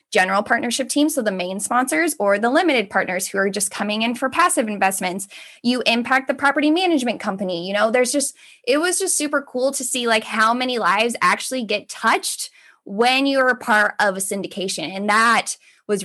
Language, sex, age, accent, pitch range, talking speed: English, female, 10-29, American, 205-275 Hz, 200 wpm